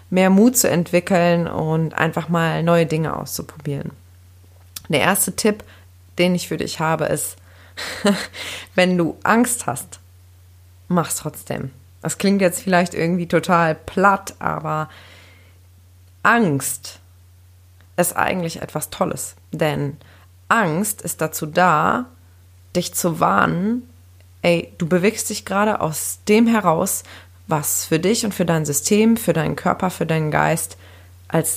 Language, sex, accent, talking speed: German, female, German, 130 wpm